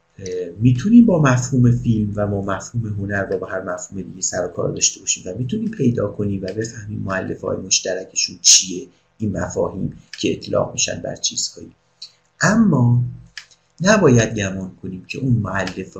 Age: 50-69